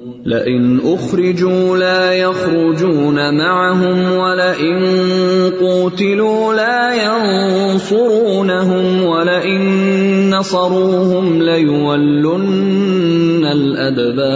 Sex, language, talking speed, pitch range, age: male, Urdu, 50 wpm, 135-185 Hz, 30-49